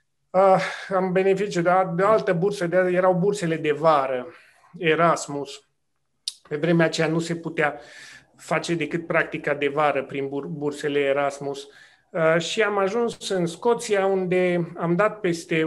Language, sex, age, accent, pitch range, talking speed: Romanian, male, 30-49, native, 155-190 Hz, 150 wpm